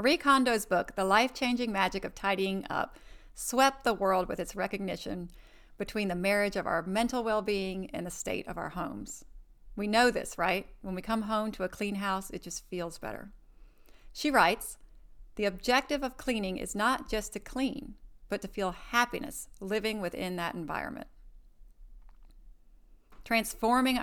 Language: English